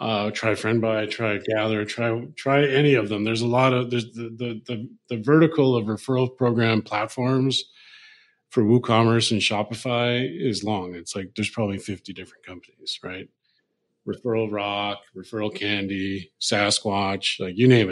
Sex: male